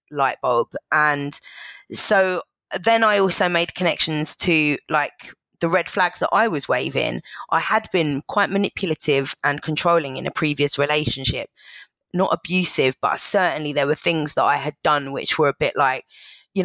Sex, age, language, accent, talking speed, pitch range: female, 20-39, English, British, 165 wpm, 150-180 Hz